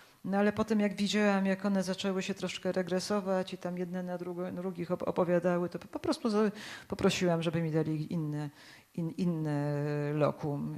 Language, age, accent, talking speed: Polish, 40-59, native, 165 wpm